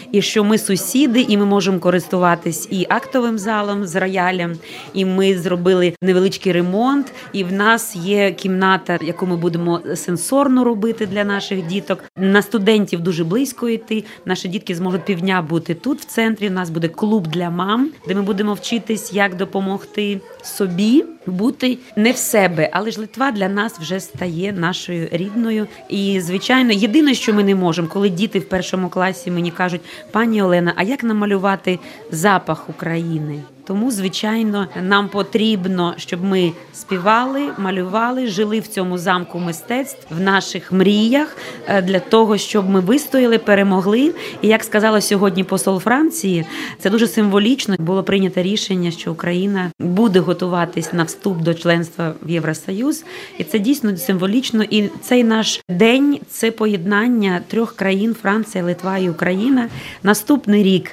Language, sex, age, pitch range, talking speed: Russian, female, 30-49, 180-220 Hz, 150 wpm